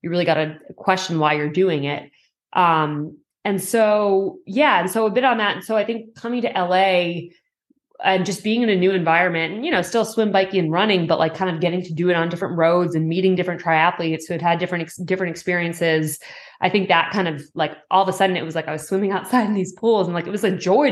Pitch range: 160-195 Hz